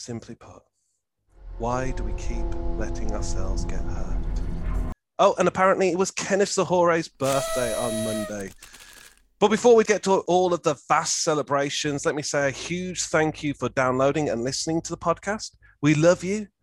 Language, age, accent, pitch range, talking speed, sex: English, 30-49, British, 115-160 Hz, 170 wpm, male